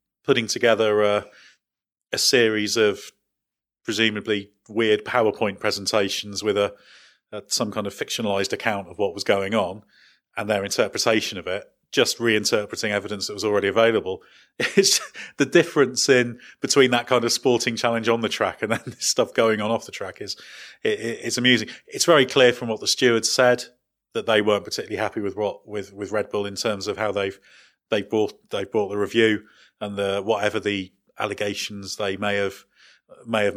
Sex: male